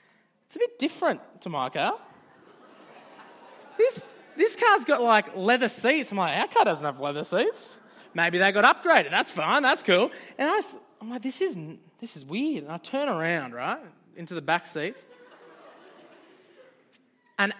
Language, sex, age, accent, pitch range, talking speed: English, male, 20-39, Australian, 235-305 Hz, 165 wpm